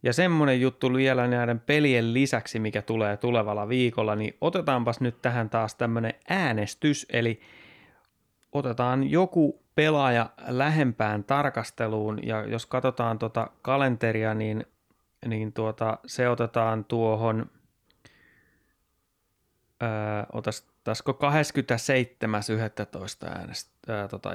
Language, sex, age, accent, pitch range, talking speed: Finnish, male, 30-49, native, 110-130 Hz, 95 wpm